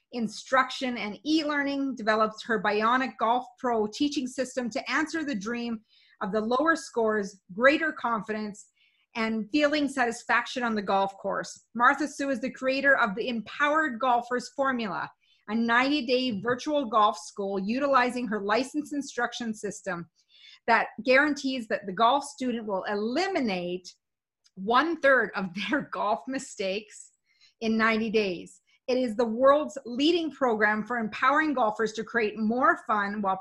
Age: 40-59